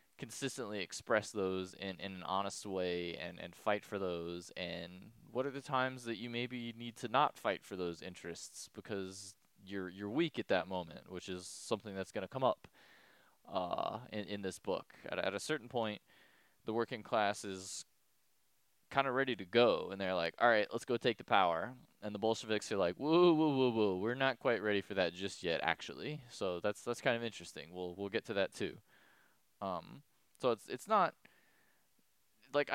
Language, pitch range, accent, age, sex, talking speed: English, 95-125 Hz, American, 20-39, male, 190 wpm